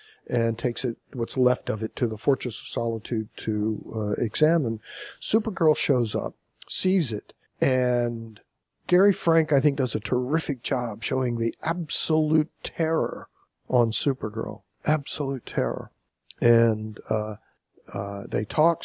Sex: male